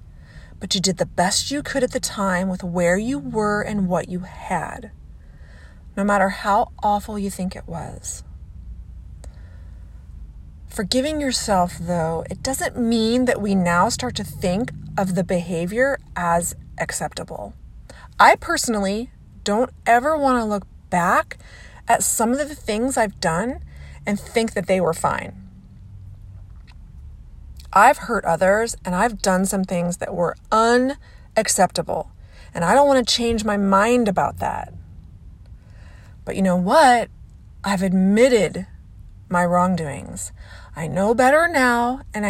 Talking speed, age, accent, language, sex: 140 wpm, 30-49, American, English, female